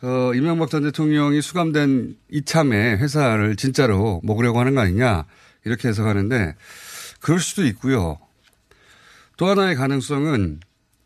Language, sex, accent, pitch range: Korean, male, native, 110-170 Hz